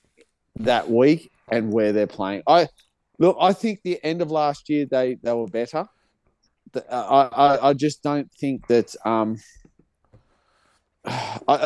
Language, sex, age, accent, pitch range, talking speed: English, male, 40-59, Australian, 125-190 Hz, 145 wpm